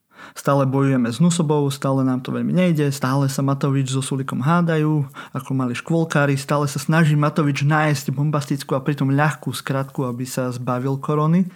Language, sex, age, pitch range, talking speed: Slovak, male, 20-39, 135-155 Hz, 165 wpm